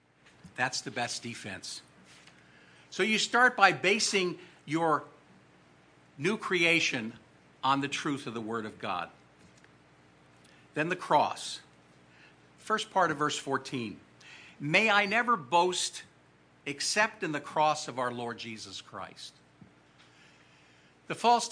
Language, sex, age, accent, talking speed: English, male, 50-69, American, 120 wpm